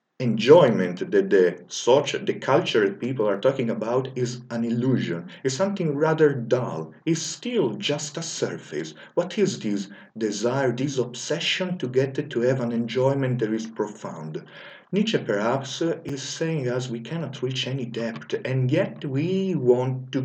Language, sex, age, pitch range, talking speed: English, male, 50-69, 110-145 Hz, 155 wpm